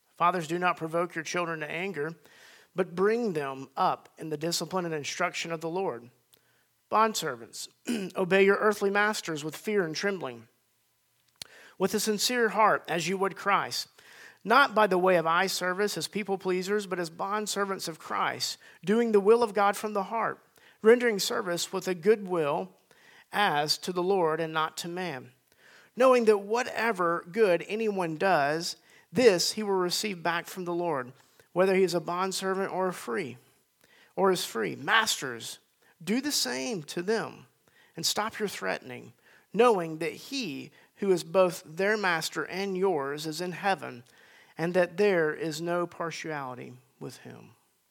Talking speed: 165 wpm